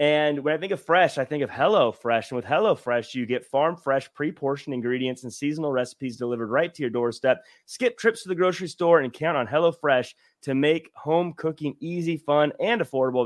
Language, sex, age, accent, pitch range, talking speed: English, male, 30-49, American, 130-170 Hz, 220 wpm